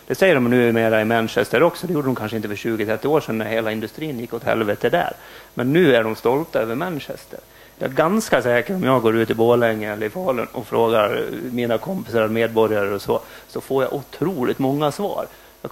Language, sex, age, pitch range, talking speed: English, male, 30-49, 110-125 Hz, 225 wpm